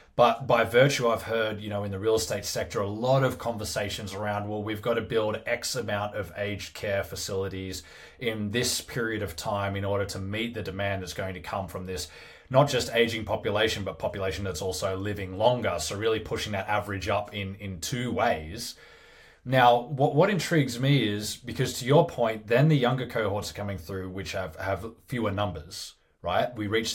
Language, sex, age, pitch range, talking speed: English, male, 20-39, 100-120 Hz, 200 wpm